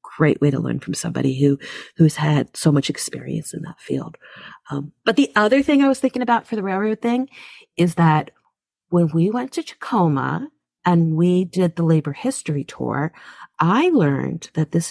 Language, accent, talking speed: English, American, 185 wpm